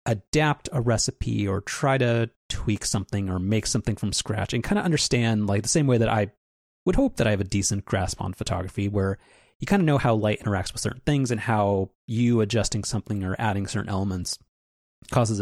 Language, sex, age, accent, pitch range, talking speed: English, male, 30-49, American, 95-125 Hz, 210 wpm